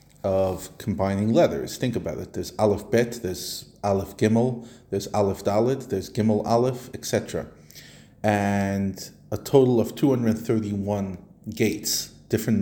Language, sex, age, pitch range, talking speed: English, male, 30-49, 100-120 Hz, 125 wpm